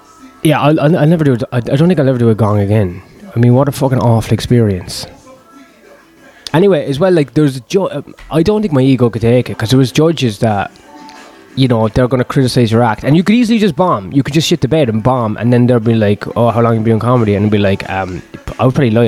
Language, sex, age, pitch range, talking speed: English, male, 20-39, 110-145 Hz, 265 wpm